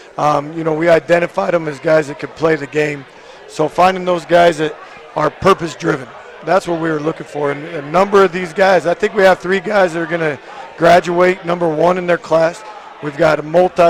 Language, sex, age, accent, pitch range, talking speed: English, male, 40-59, American, 155-180 Hz, 220 wpm